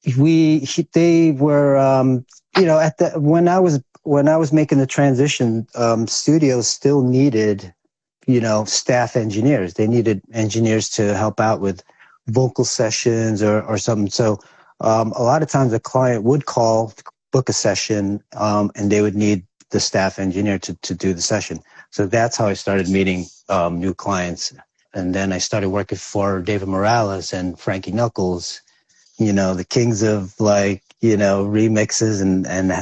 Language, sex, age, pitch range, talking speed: English, male, 40-59, 95-120 Hz, 175 wpm